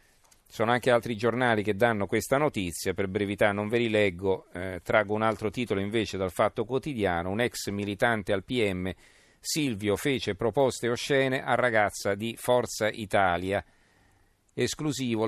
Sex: male